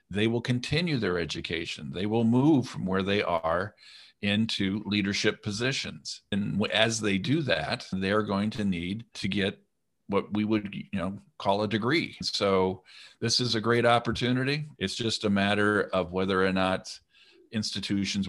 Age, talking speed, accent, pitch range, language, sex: 50-69, 160 wpm, American, 95-115 Hz, English, male